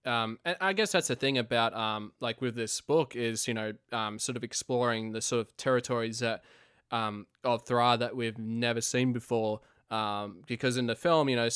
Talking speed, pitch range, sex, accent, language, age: 210 wpm, 110-125 Hz, male, Australian, English, 20-39